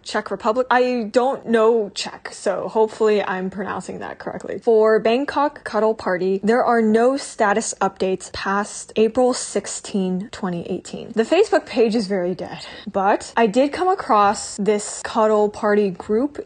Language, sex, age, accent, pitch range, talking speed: English, female, 10-29, American, 190-230 Hz, 145 wpm